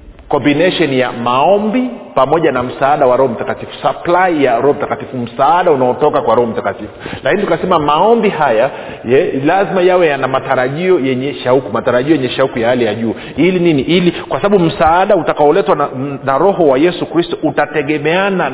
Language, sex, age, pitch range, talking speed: Swahili, male, 40-59, 130-180 Hz, 160 wpm